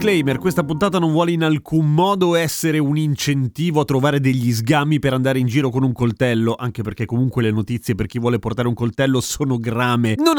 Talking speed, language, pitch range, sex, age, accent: 210 wpm, Italian, 120-185 Hz, male, 30-49, native